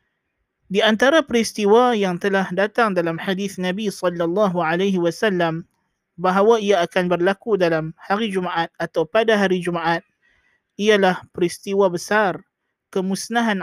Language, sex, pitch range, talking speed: Malay, male, 175-210 Hz, 120 wpm